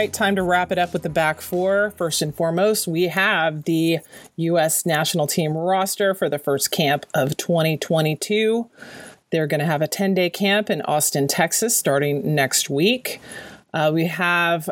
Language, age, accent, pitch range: English, 30-49, American, 155-185 Hz